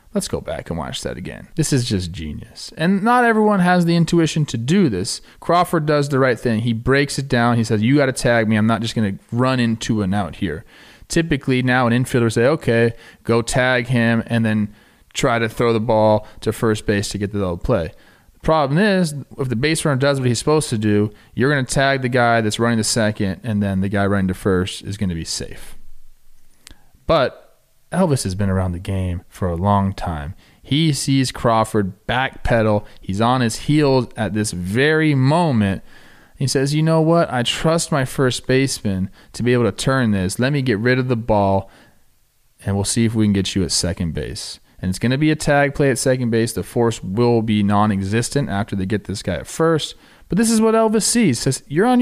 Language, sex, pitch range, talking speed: English, male, 105-140 Hz, 225 wpm